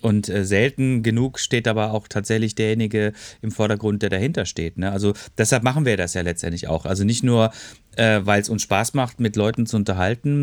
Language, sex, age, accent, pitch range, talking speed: German, male, 30-49, German, 100-120 Hz, 190 wpm